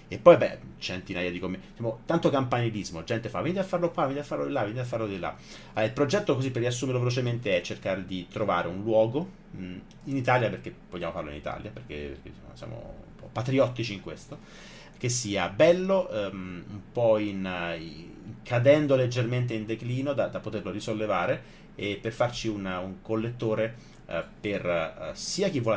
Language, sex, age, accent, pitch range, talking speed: Italian, male, 30-49, native, 95-125 Hz, 185 wpm